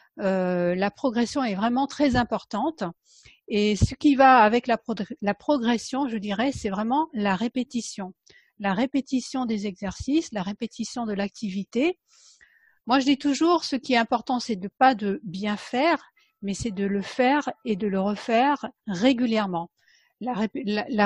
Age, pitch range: 50-69, 205-260 Hz